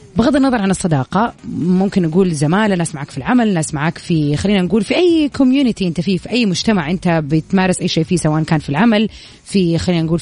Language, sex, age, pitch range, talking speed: Arabic, female, 30-49, 165-230 Hz, 210 wpm